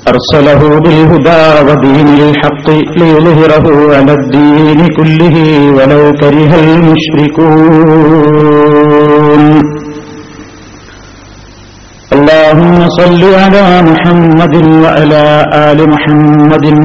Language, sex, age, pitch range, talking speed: Malayalam, male, 50-69, 145-160 Hz, 65 wpm